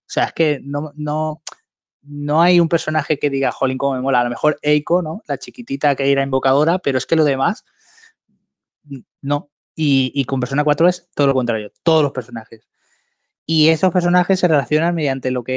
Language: Spanish